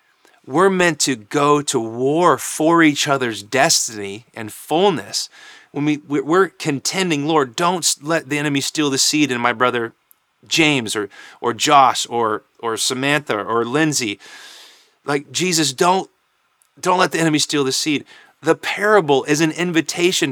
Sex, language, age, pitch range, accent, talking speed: male, English, 30-49, 125-160 Hz, American, 150 wpm